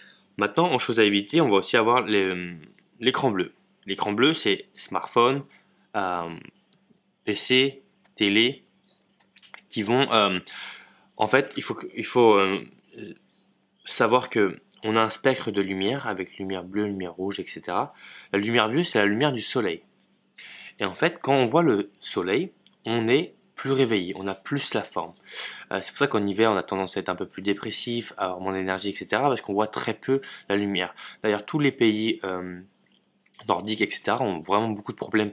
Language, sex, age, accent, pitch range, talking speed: French, male, 20-39, French, 95-120 Hz, 180 wpm